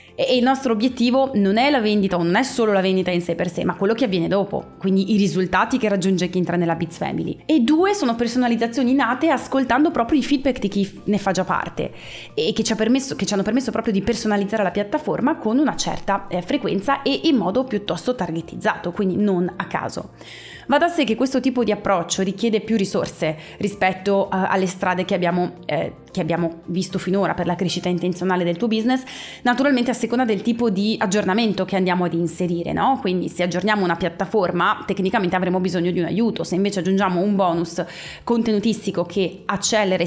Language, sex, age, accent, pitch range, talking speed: Italian, female, 20-39, native, 180-235 Hz, 200 wpm